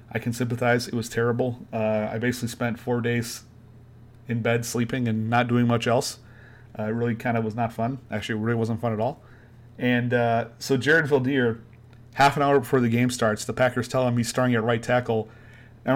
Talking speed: 215 wpm